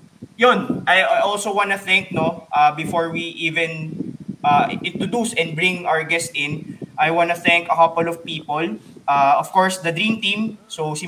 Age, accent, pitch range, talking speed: 20-39, Filipino, 165-190 Hz, 170 wpm